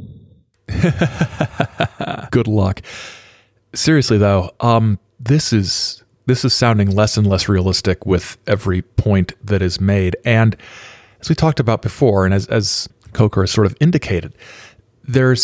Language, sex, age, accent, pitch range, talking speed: English, male, 40-59, American, 95-120 Hz, 135 wpm